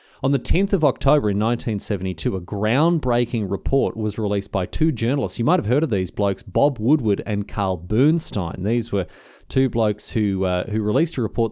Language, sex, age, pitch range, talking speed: English, male, 30-49, 110-150 Hz, 195 wpm